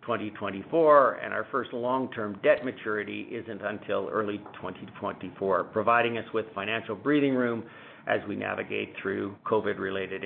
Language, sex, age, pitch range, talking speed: English, male, 50-69, 110-135 Hz, 130 wpm